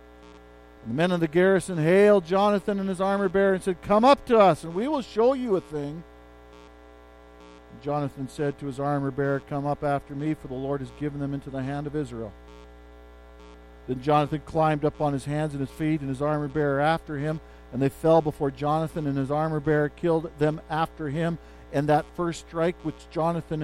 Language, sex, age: English, male, 50-69